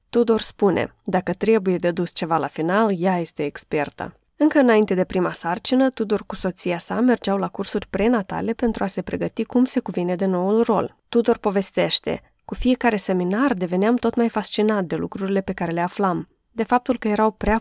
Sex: female